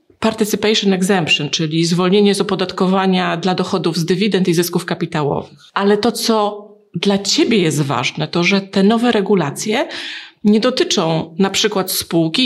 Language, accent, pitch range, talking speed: Polish, native, 185-210 Hz, 145 wpm